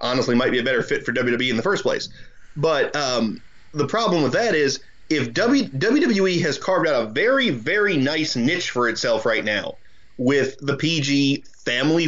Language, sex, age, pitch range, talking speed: English, male, 30-49, 125-165 Hz, 185 wpm